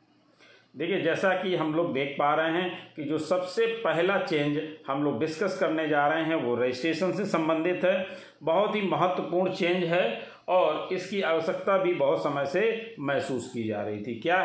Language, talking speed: Hindi, 185 wpm